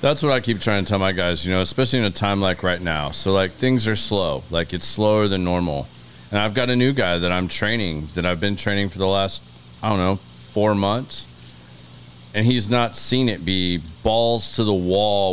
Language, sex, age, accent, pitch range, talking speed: English, male, 30-49, American, 80-110 Hz, 230 wpm